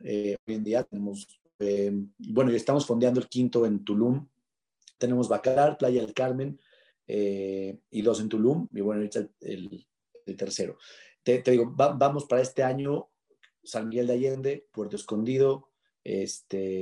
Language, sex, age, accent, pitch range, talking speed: Spanish, male, 30-49, Mexican, 115-140 Hz, 160 wpm